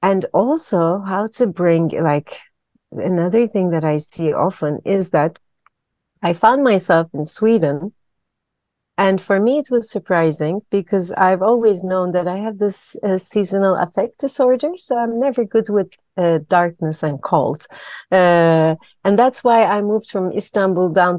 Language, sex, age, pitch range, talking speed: Dutch, female, 40-59, 170-235 Hz, 155 wpm